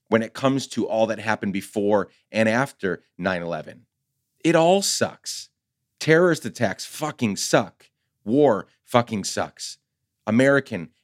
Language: English